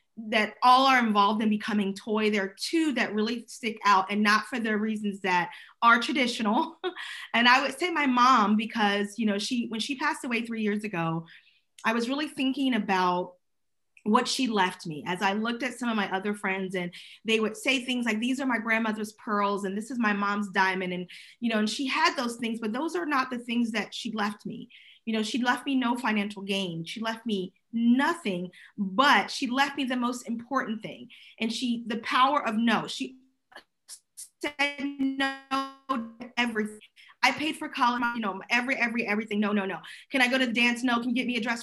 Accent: American